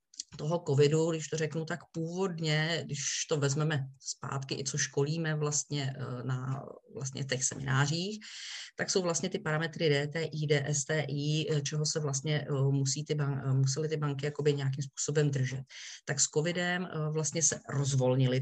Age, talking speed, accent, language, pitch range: 30-49, 140 wpm, native, Czech, 140-160 Hz